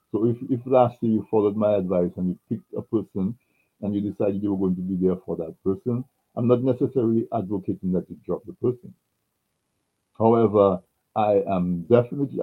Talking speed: 185 wpm